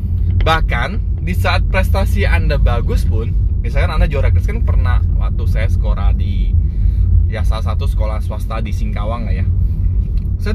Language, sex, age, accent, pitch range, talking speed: Indonesian, male, 20-39, native, 85-90 Hz, 150 wpm